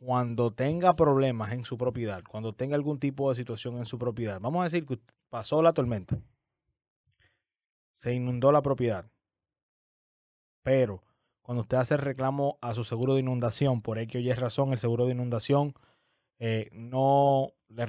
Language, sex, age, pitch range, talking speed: Spanish, male, 20-39, 120-140 Hz, 165 wpm